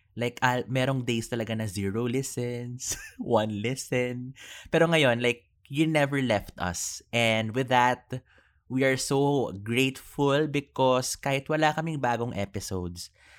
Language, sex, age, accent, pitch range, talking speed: English, male, 20-39, Filipino, 100-130 Hz, 135 wpm